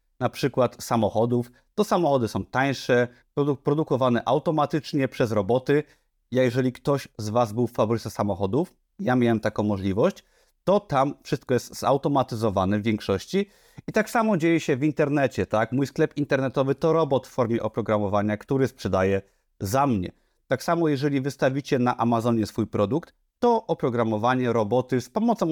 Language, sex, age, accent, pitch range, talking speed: Polish, male, 30-49, native, 115-150 Hz, 155 wpm